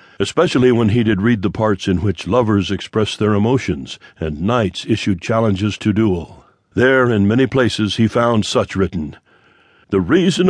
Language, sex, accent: English, male, American